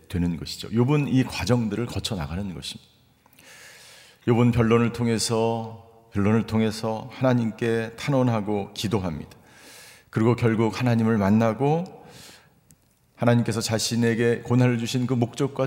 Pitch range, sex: 100-130 Hz, male